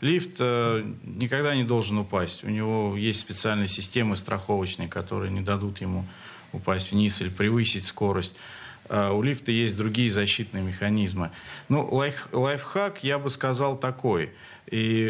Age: 40-59